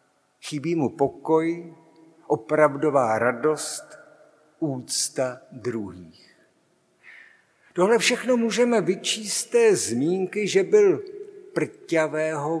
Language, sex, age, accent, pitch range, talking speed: Czech, male, 50-69, native, 140-175 Hz, 75 wpm